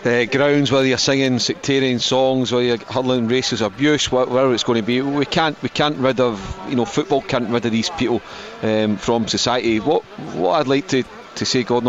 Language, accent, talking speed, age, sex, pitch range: English, British, 210 wpm, 40-59, male, 120-145 Hz